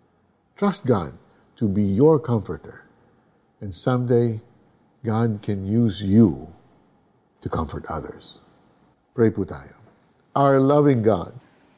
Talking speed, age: 105 wpm, 50-69